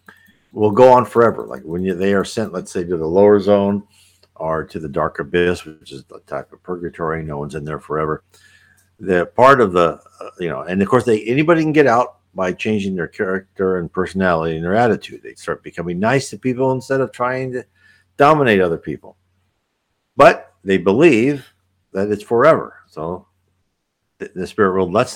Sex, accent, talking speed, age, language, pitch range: male, American, 190 wpm, 60-79, English, 90-115 Hz